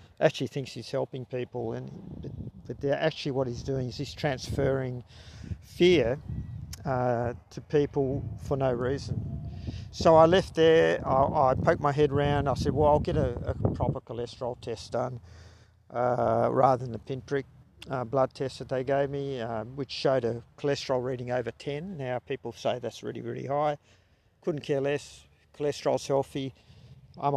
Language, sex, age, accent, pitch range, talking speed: English, male, 50-69, Australian, 120-145 Hz, 165 wpm